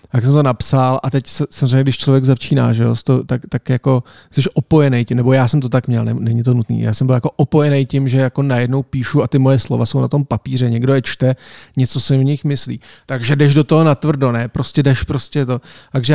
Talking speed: 230 wpm